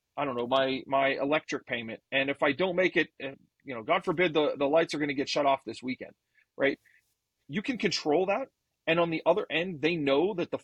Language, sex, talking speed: English, male, 235 wpm